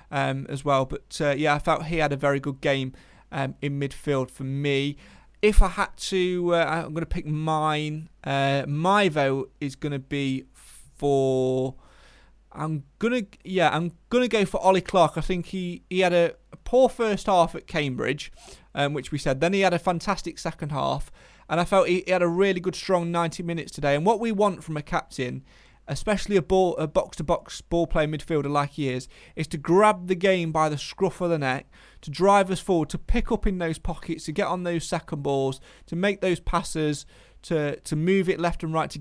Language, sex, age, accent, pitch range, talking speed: English, male, 30-49, British, 140-180 Hz, 210 wpm